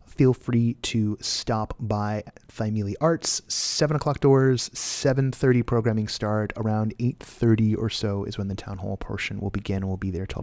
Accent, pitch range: American, 100-130 Hz